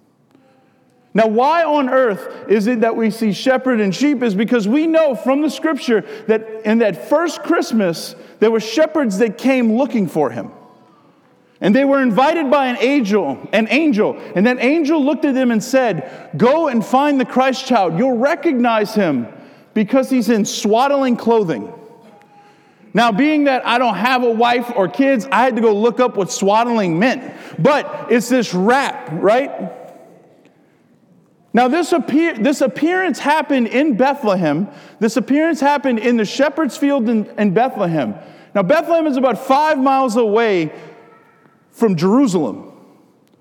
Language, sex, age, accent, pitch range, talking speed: English, male, 40-59, American, 215-280 Hz, 155 wpm